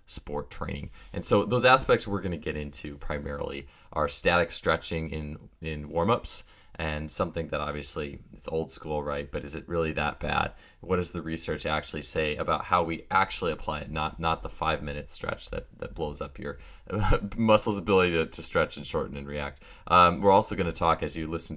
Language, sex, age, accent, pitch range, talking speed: English, male, 20-39, American, 75-90 Hz, 205 wpm